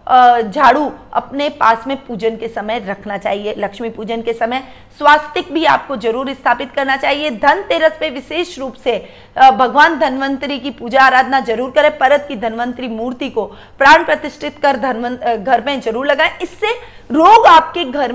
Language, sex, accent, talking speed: Hindi, female, native, 160 wpm